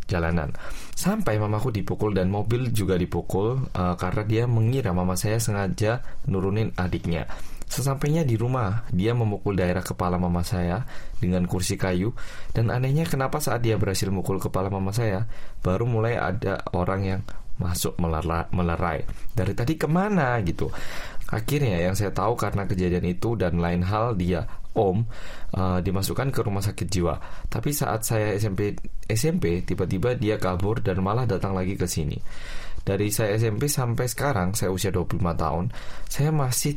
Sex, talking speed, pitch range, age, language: male, 150 wpm, 90-115 Hz, 20-39, Indonesian